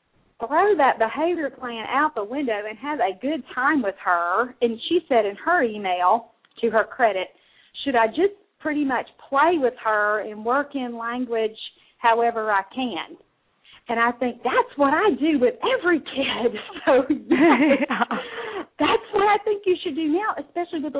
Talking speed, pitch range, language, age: 170 wpm, 230-305 Hz, English, 40-59